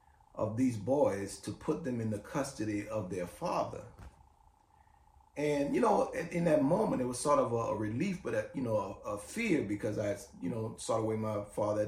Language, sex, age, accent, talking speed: English, male, 30-49, American, 205 wpm